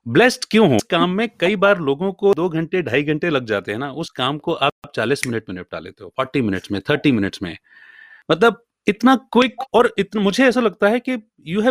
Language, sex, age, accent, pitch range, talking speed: Hindi, male, 30-49, native, 130-195 Hz, 85 wpm